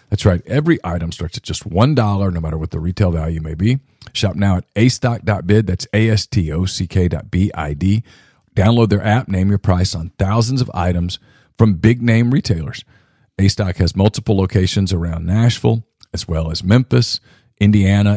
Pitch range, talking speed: 90-110 Hz, 150 wpm